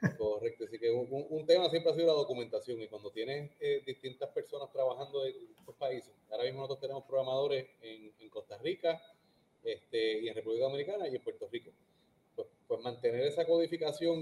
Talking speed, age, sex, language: 185 wpm, 30-49, male, Spanish